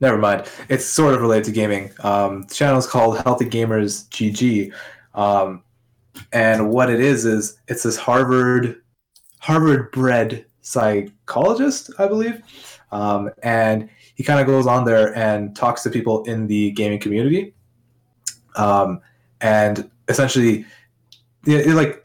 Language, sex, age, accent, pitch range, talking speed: English, male, 20-39, American, 105-125 Hz, 140 wpm